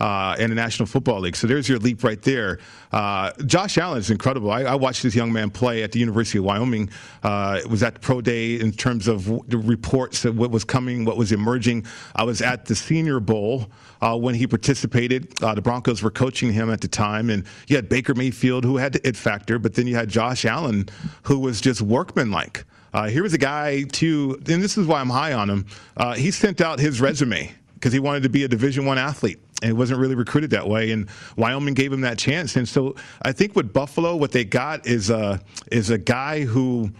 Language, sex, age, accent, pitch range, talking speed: English, male, 40-59, American, 110-135 Hz, 230 wpm